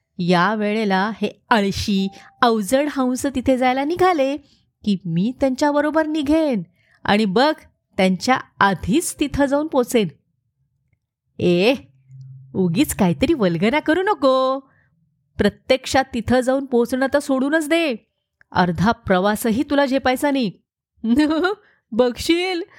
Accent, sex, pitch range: native, female, 195-290 Hz